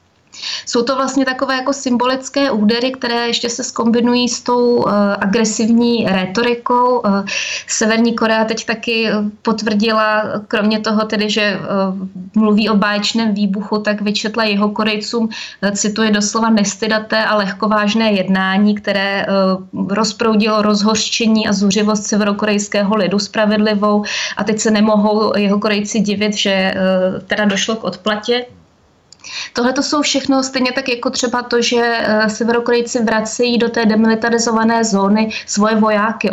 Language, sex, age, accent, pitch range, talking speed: Czech, female, 20-39, native, 205-235 Hz, 135 wpm